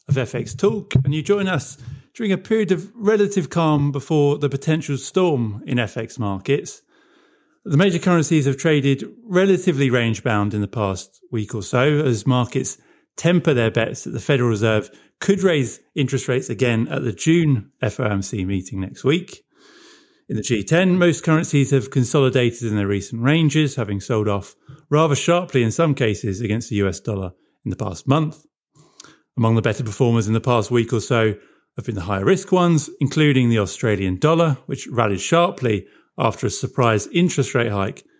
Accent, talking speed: British, 175 wpm